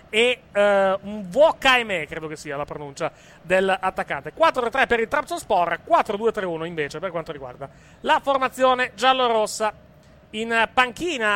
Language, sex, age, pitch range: Italian, male, 30-49, 185-260 Hz